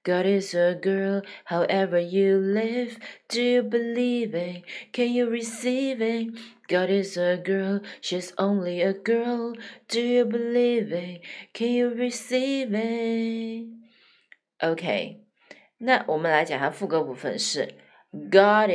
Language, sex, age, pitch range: Chinese, female, 30-49, 170-235 Hz